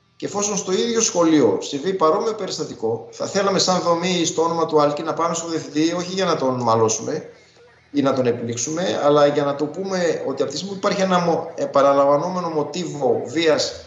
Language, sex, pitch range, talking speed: Greek, male, 145-190 Hz, 190 wpm